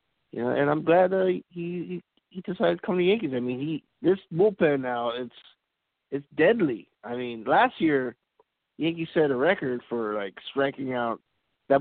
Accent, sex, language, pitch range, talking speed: American, male, English, 115-150 Hz, 190 wpm